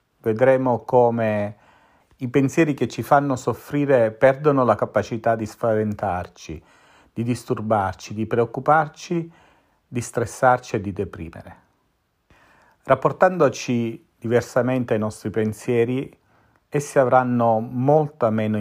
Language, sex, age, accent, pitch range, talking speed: Italian, male, 40-59, native, 100-125 Hz, 100 wpm